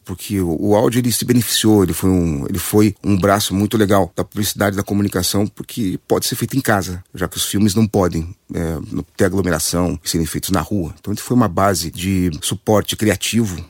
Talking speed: 200 wpm